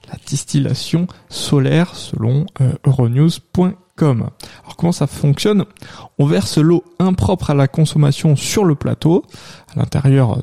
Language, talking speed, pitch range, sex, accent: French, 125 wpm, 130-165 Hz, male, French